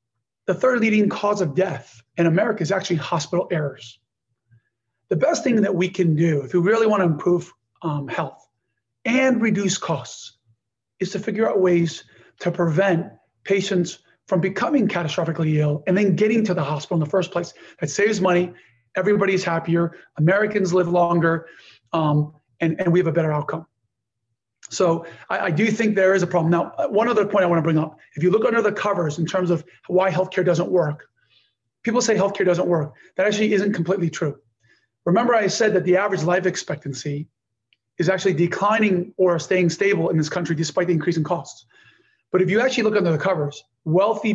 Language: English